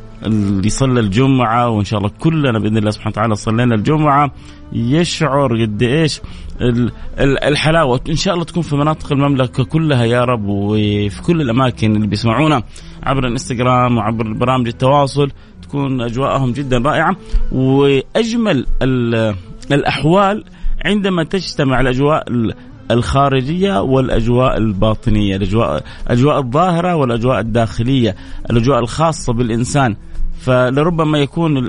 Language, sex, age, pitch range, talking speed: Arabic, male, 30-49, 110-145 Hz, 110 wpm